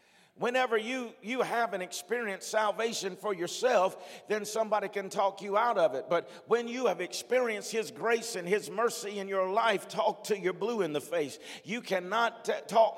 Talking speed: 185 wpm